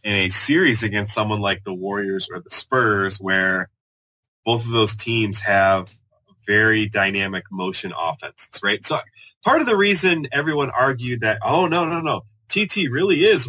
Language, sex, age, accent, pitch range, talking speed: English, male, 20-39, American, 100-135 Hz, 165 wpm